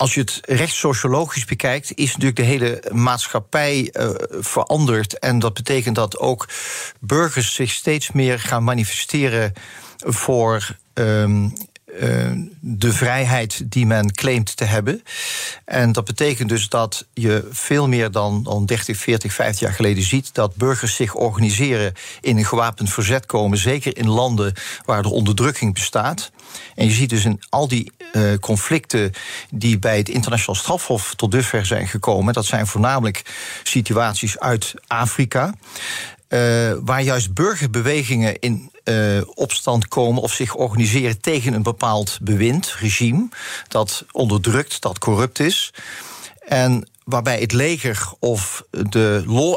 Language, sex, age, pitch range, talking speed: Dutch, male, 50-69, 110-130 Hz, 140 wpm